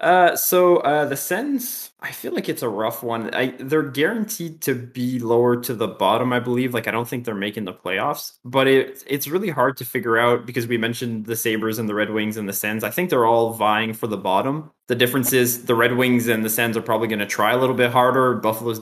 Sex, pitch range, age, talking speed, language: male, 115-135 Hz, 20-39, 250 wpm, English